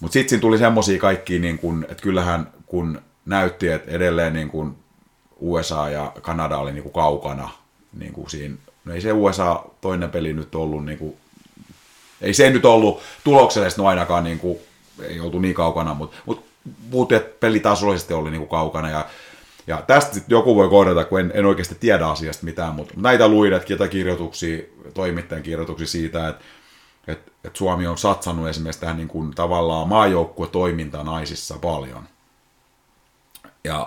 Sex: male